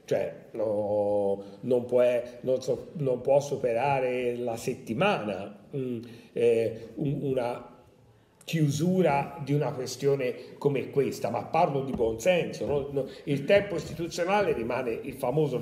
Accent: native